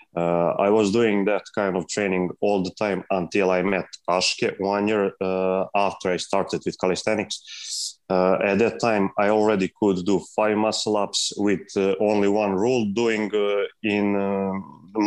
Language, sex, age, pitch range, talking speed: English, male, 20-39, 90-100 Hz, 165 wpm